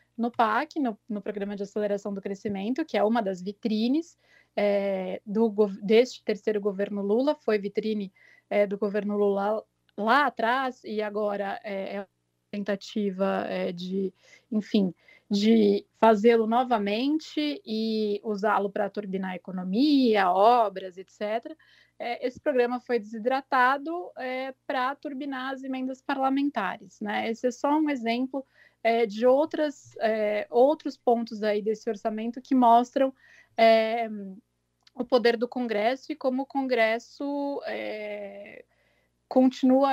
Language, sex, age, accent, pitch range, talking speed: Portuguese, female, 20-39, Brazilian, 210-260 Hz, 120 wpm